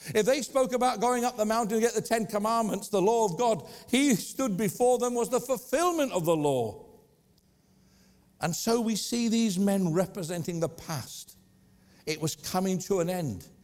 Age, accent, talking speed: 60-79, British, 185 wpm